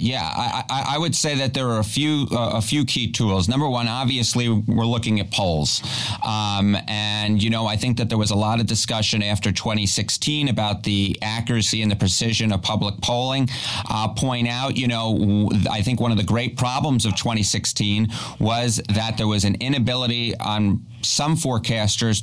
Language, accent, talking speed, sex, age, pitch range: English, American, 190 wpm, male, 30-49, 110-125 Hz